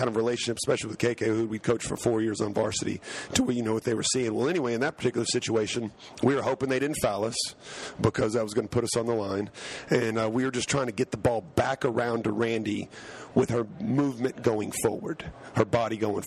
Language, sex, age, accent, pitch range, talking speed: English, male, 40-59, American, 115-130 Hz, 245 wpm